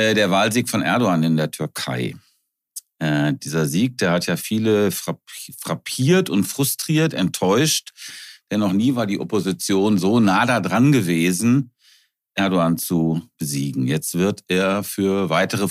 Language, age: German, 50-69